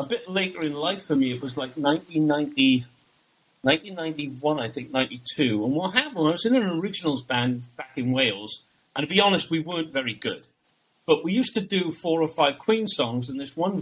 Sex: male